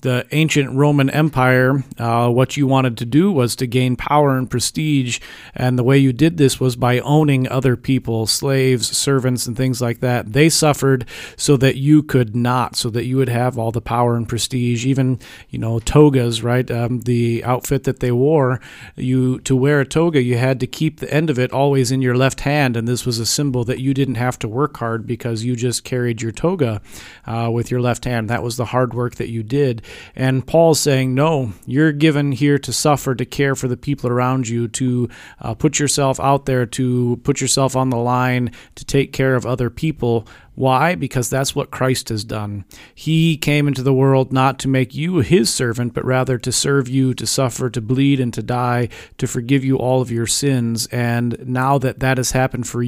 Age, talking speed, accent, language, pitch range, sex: 40-59, 215 wpm, American, English, 120-135 Hz, male